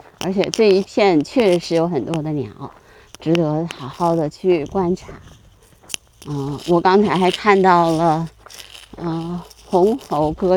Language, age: Chinese, 30-49